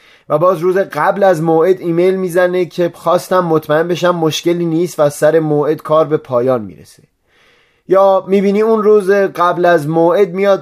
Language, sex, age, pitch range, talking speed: Persian, male, 30-49, 150-200 Hz, 165 wpm